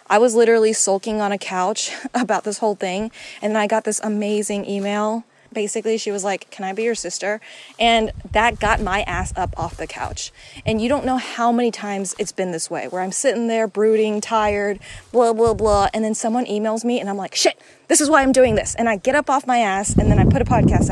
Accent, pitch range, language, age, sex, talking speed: American, 210-290 Hz, English, 20-39, female, 240 wpm